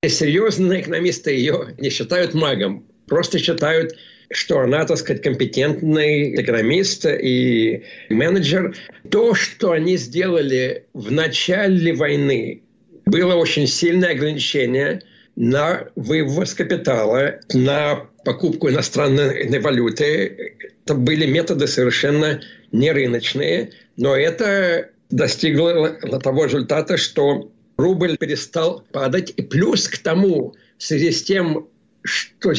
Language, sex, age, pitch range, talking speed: Russian, male, 60-79, 145-180 Hz, 105 wpm